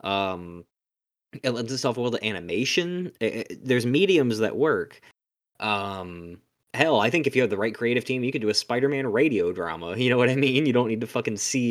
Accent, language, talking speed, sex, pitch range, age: American, English, 215 wpm, male, 95-120 Hz, 20-39